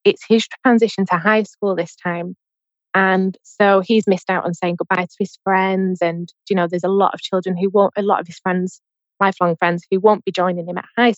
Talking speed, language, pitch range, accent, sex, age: 230 wpm, English, 185-220 Hz, British, female, 20-39